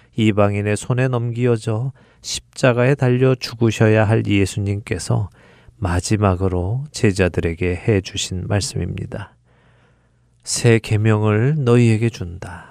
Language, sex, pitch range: Korean, male, 100-125 Hz